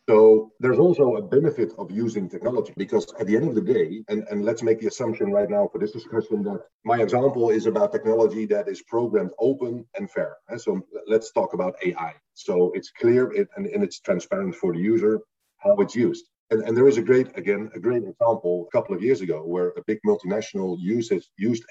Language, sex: English, male